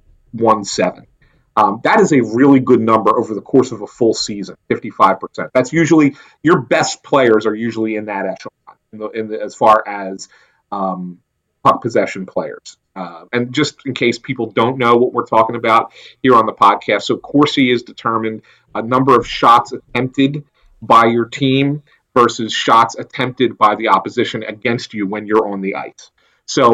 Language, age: English, 40-59